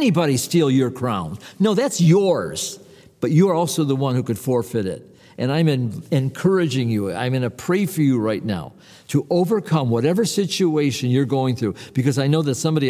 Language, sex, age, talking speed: English, male, 50-69, 195 wpm